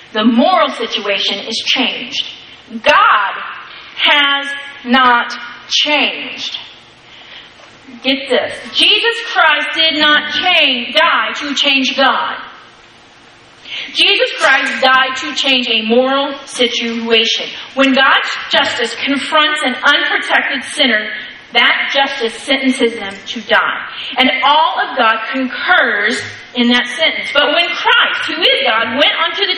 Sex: female